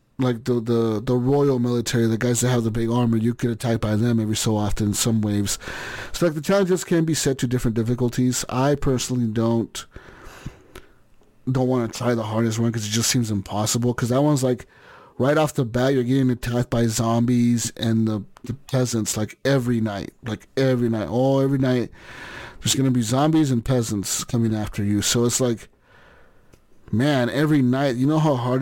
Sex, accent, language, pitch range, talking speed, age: male, American, English, 115-130 Hz, 200 wpm, 30-49